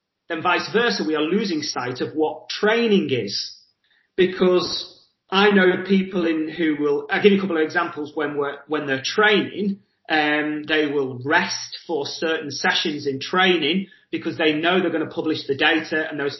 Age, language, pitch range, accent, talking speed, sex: 30-49, English, 150-185 Hz, British, 185 wpm, male